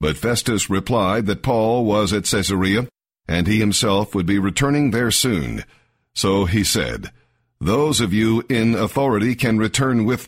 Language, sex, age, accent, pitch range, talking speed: English, male, 50-69, American, 100-120 Hz, 160 wpm